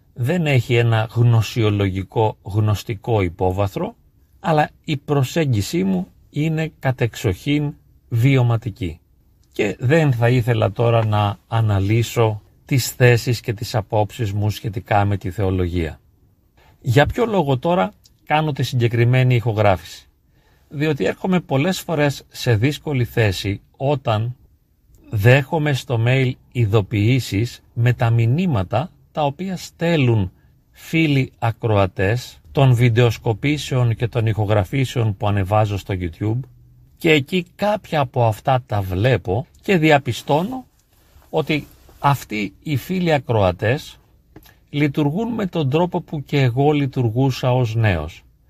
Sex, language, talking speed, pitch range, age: male, Greek, 115 wpm, 110-150 Hz, 40-59